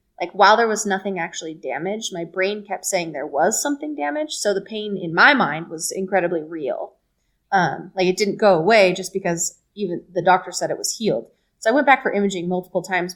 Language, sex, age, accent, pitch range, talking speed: English, female, 20-39, American, 175-210 Hz, 215 wpm